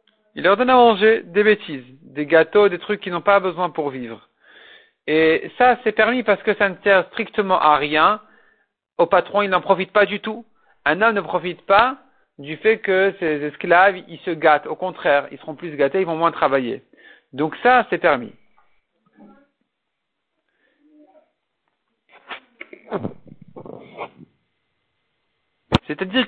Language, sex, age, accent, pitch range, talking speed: French, male, 50-69, French, 160-220 Hz, 150 wpm